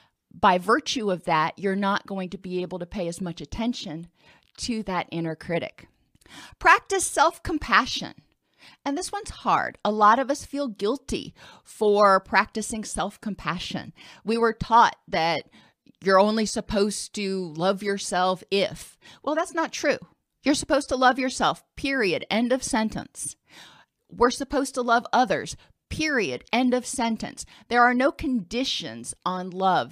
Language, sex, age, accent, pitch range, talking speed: English, female, 40-59, American, 195-250 Hz, 145 wpm